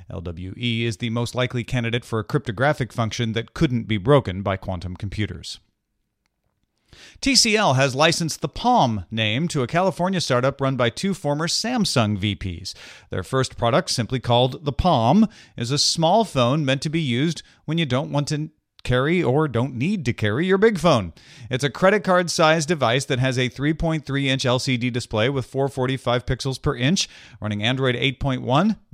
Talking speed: 170 wpm